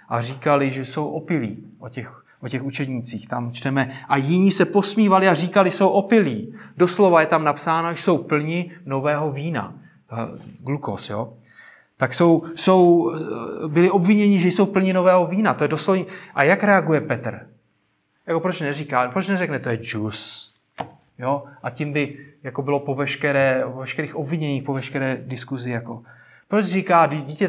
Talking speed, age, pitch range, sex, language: 165 wpm, 30-49, 130-170 Hz, male, Czech